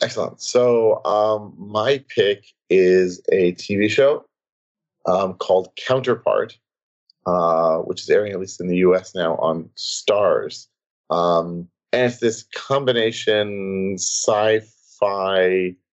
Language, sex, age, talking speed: English, male, 40-59, 115 wpm